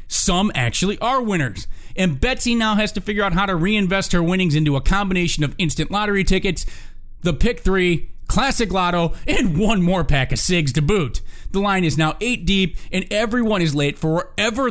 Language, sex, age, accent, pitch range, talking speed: English, male, 30-49, American, 135-185 Hz, 195 wpm